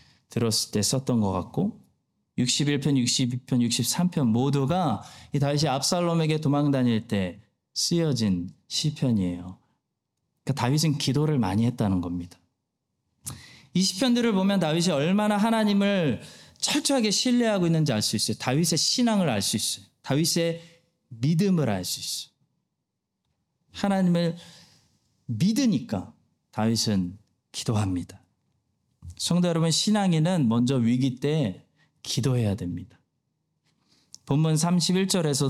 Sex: male